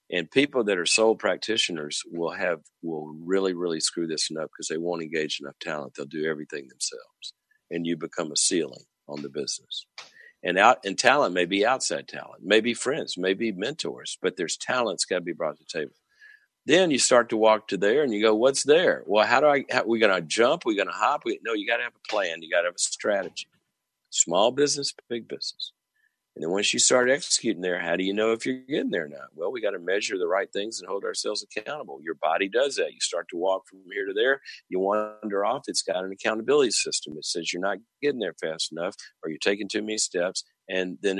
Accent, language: American, English